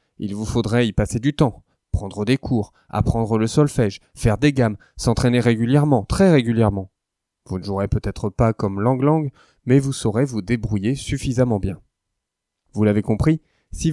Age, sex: 20-39, male